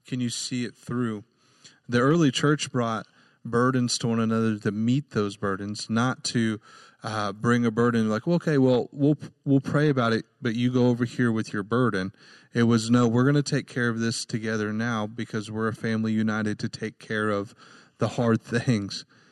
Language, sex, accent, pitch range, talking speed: English, male, American, 110-125 Hz, 195 wpm